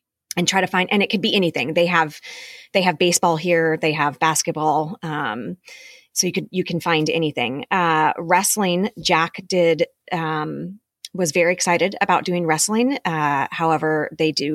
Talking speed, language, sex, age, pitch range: 170 wpm, English, female, 30-49, 155-185 Hz